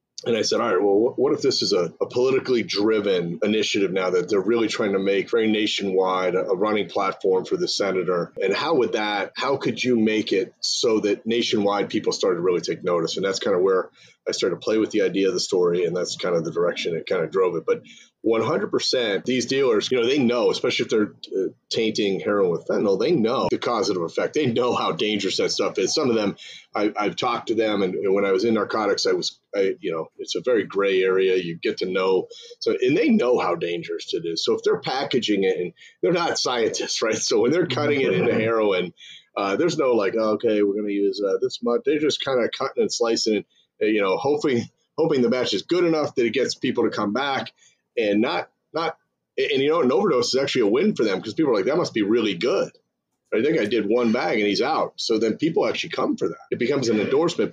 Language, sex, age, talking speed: English, male, 30-49, 245 wpm